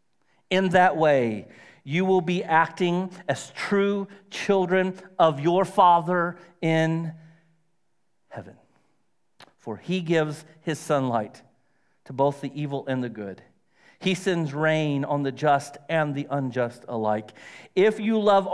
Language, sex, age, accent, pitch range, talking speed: English, male, 40-59, American, 145-185 Hz, 130 wpm